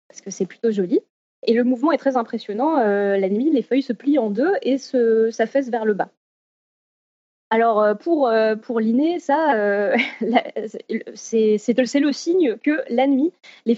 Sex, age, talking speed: female, 20-39, 180 wpm